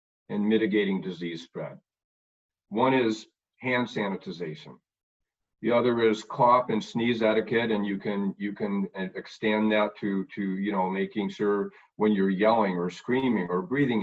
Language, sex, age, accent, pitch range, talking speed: English, male, 50-69, American, 95-120 Hz, 150 wpm